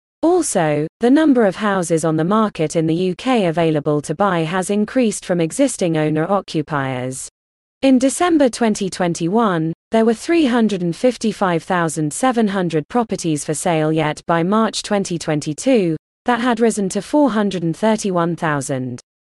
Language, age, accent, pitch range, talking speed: English, 20-39, British, 160-230 Hz, 115 wpm